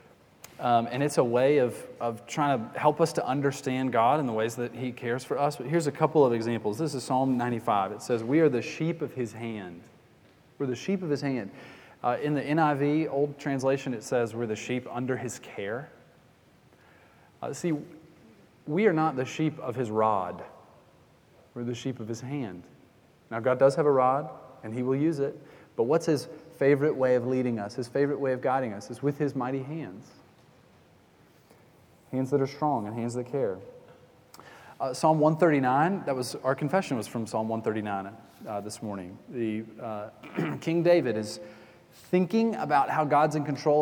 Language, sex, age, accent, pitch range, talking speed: English, male, 30-49, American, 120-155 Hz, 195 wpm